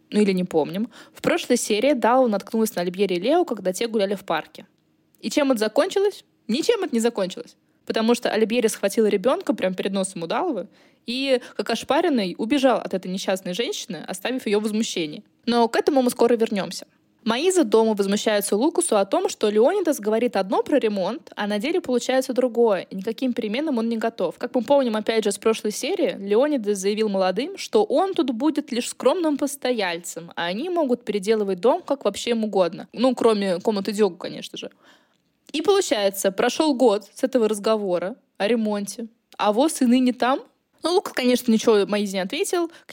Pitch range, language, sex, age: 200-275 Hz, Russian, female, 20-39